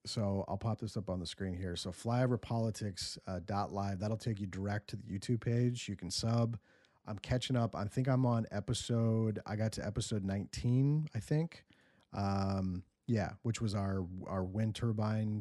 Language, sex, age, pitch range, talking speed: English, male, 30-49, 95-110 Hz, 175 wpm